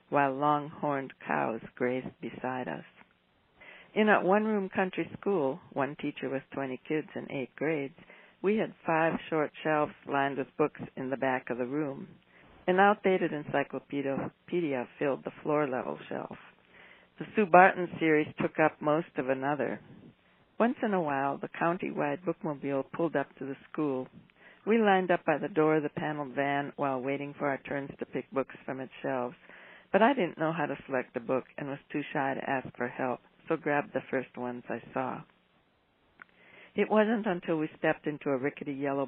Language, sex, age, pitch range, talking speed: English, female, 60-79, 140-170 Hz, 175 wpm